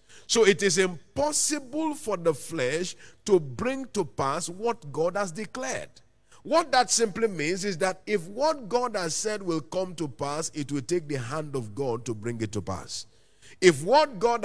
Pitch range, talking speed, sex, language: 145-215 Hz, 185 wpm, male, English